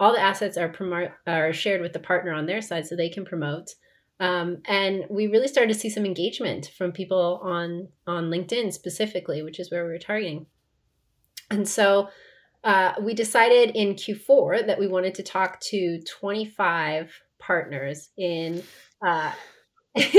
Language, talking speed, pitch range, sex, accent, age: English, 165 wpm, 180-235 Hz, female, American, 30-49